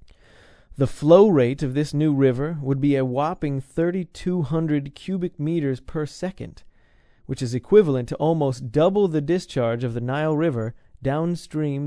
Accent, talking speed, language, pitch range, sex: American, 145 wpm, English, 120-165 Hz, male